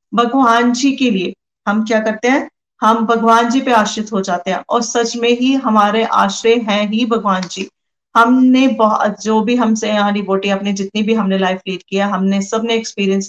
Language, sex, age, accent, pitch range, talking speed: Hindi, female, 30-49, native, 195-240 Hz, 185 wpm